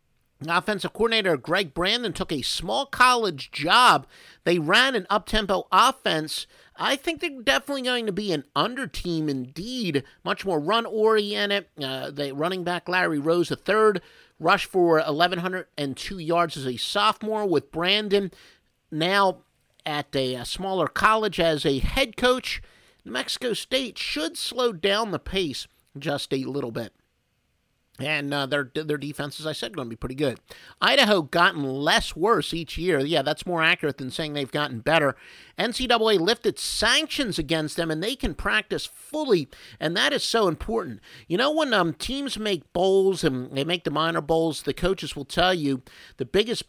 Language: English